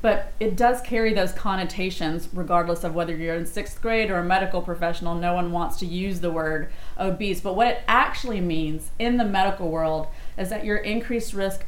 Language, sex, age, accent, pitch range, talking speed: English, female, 30-49, American, 170-200 Hz, 200 wpm